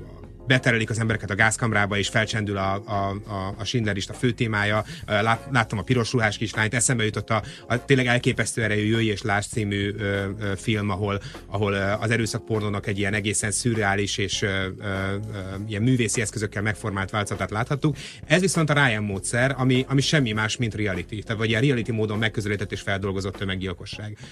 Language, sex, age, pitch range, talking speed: Hungarian, male, 30-49, 100-125 Hz, 160 wpm